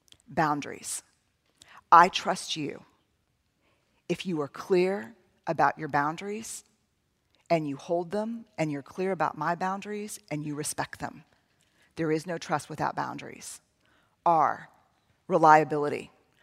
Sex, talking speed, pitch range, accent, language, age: female, 120 wpm, 165-210 Hz, American, English, 40-59